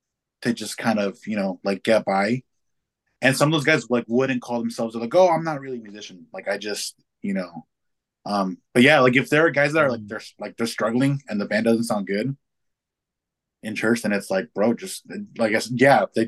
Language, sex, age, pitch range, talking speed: English, male, 20-39, 105-130 Hz, 230 wpm